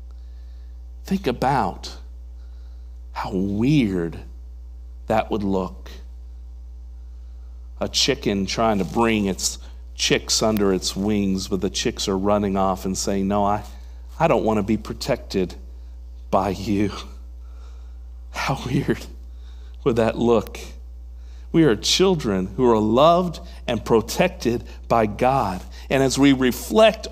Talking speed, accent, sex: 120 wpm, American, male